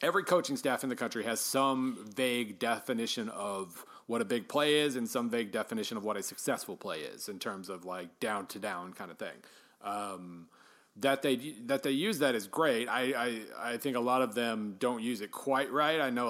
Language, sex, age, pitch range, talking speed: English, male, 40-59, 110-135 Hz, 220 wpm